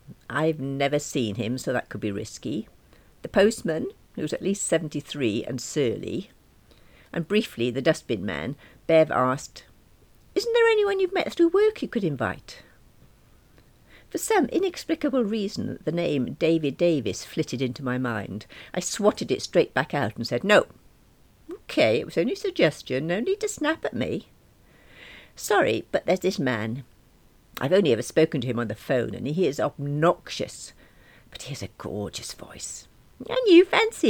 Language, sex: English, female